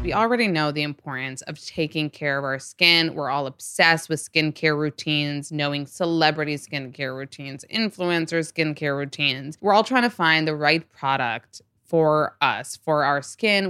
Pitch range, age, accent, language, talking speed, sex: 140-170 Hz, 20-39, American, English, 160 wpm, female